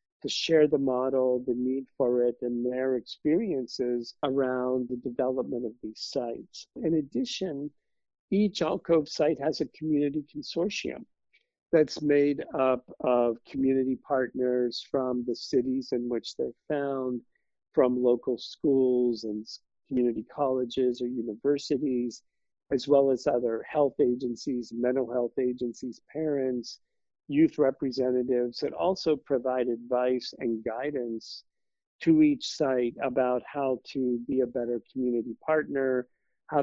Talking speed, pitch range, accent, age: 125 wpm, 120-145 Hz, American, 50-69